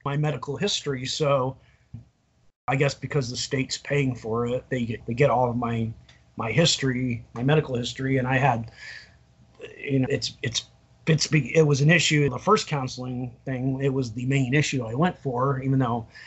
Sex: male